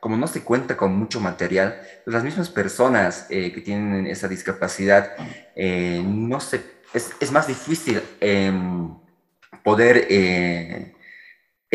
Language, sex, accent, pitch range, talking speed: Spanish, male, Mexican, 95-115 Hz, 115 wpm